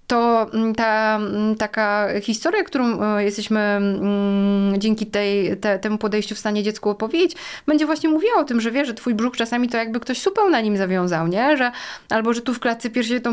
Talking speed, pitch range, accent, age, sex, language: 190 wpm, 200-245 Hz, native, 20-39, female, Polish